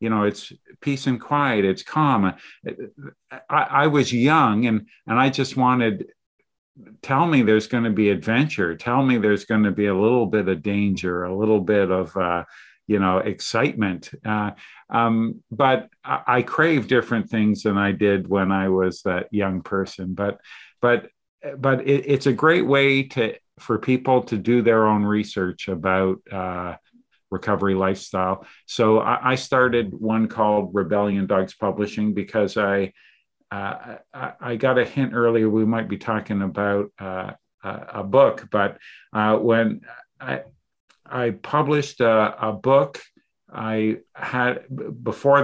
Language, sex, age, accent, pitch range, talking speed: English, male, 50-69, American, 100-130 Hz, 155 wpm